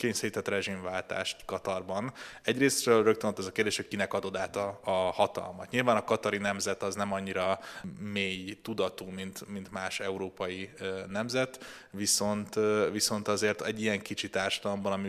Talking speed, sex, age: 150 wpm, male, 20-39